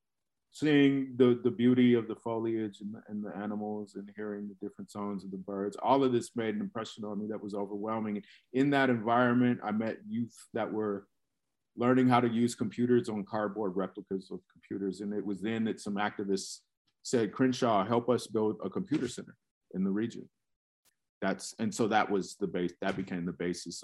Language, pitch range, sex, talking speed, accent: English, 95-110 Hz, male, 195 wpm, American